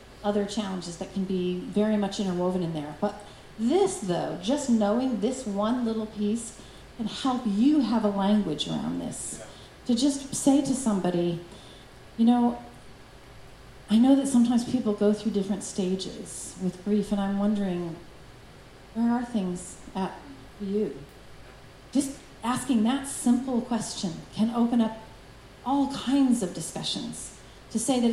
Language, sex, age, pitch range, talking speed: English, female, 40-59, 195-245 Hz, 145 wpm